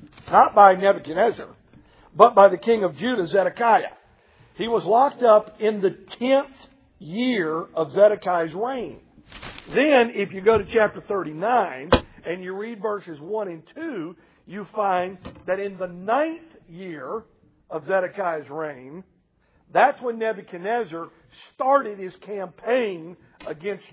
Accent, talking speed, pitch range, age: American, 130 wpm, 185-235 Hz, 50-69